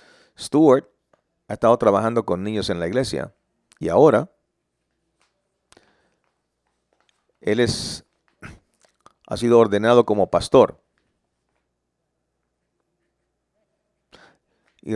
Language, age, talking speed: English, 50-69, 70 wpm